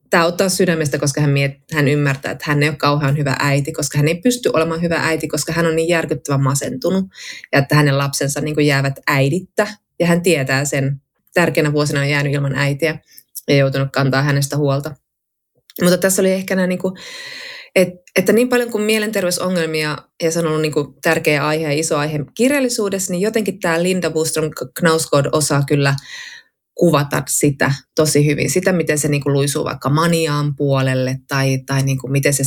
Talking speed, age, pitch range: 175 wpm, 20-39, 140-170 Hz